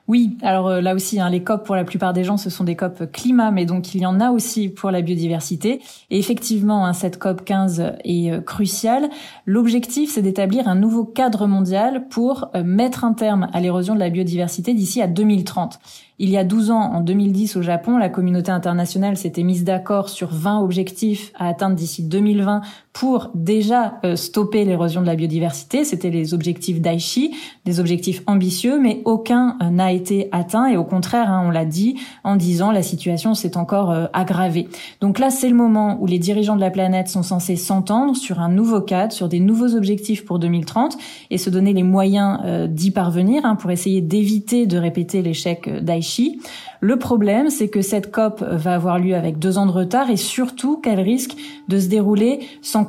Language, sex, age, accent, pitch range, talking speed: French, female, 20-39, French, 180-225 Hz, 200 wpm